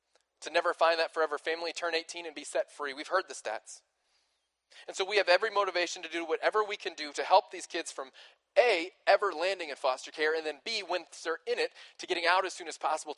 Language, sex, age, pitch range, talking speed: English, male, 20-39, 160-195 Hz, 240 wpm